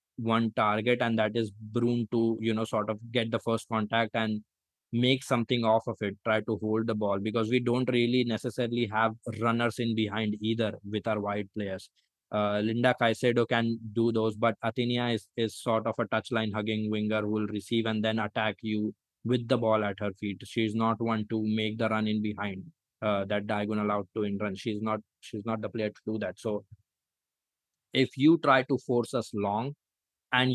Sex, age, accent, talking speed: male, 20-39, Indian, 200 wpm